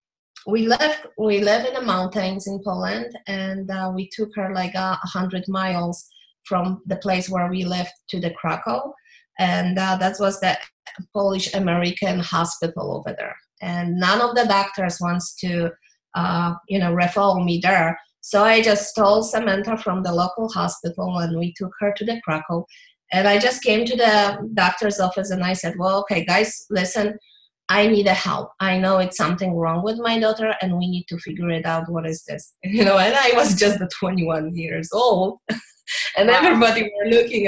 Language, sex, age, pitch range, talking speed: English, female, 20-39, 185-240 Hz, 185 wpm